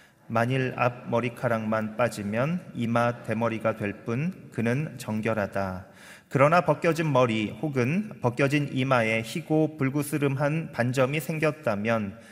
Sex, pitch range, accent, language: male, 115-150 Hz, native, Korean